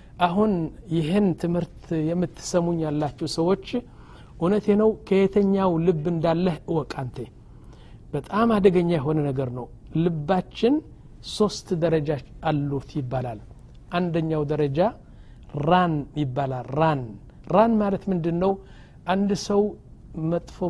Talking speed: 95 wpm